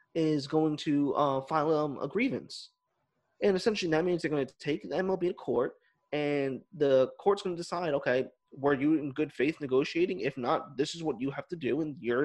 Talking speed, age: 215 wpm, 20-39